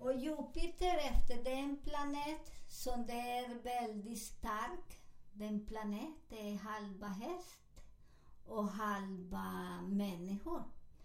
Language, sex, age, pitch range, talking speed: Swedish, male, 50-69, 220-280 Hz, 100 wpm